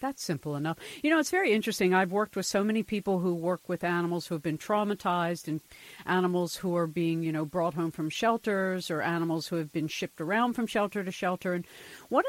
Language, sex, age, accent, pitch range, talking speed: English, female, 50-69, American, 170-200 Hz, 225 wpm